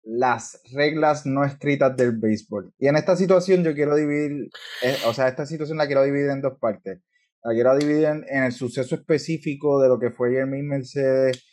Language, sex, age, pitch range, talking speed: Spanish, male, 20-39, 120-140 Hz, 200 wpm